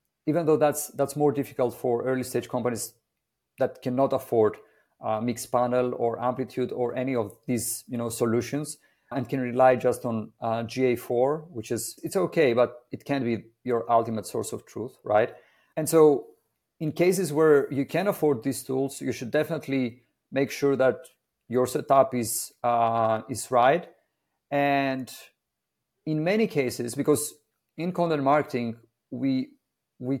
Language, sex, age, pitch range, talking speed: English, male, 40-59, 120-150 Hz, 155 wpm